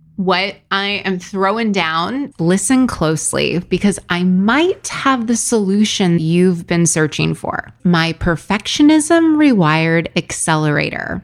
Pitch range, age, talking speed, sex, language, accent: 165-220 Hz, 20-39, 110 wpm, female, English, American